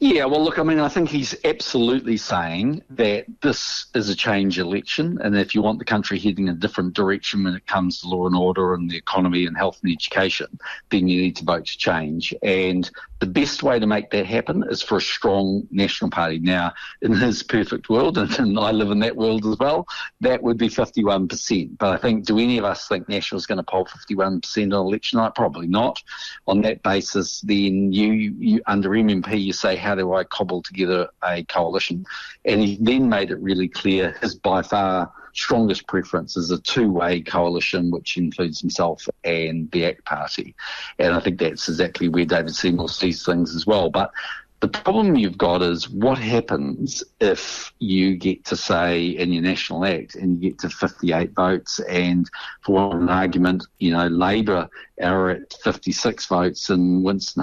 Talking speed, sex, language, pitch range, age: 190 wpm, male, English, 90-105 Hz, 50-69